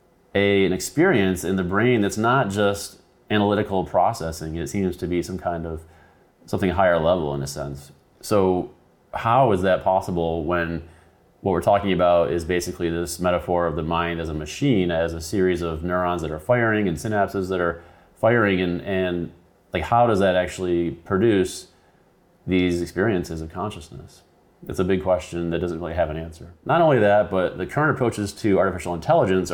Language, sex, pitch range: English, male, 85-95 Hz